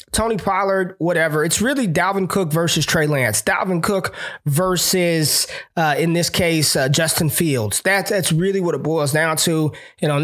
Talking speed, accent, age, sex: 175 wpm, American, 20-39, male